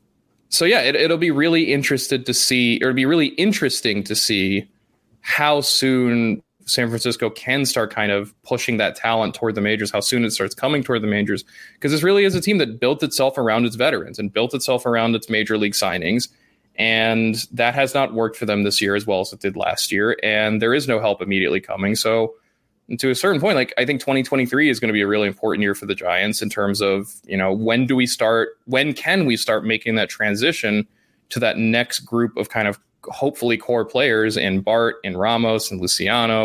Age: 20-39